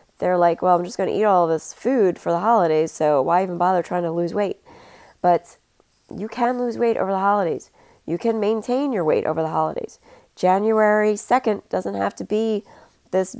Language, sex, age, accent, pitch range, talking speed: English, female, 30-49, American, 175-215 Hz, 205 wpm